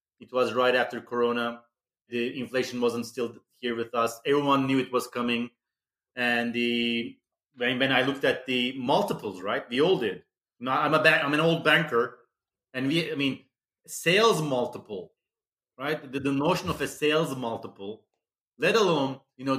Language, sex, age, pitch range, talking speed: English, male, 30-49, 120-150 Hz, 160 wpm